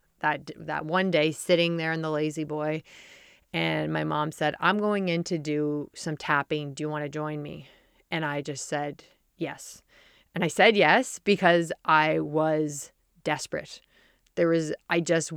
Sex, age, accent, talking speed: female, 30-49, American, 170 wpm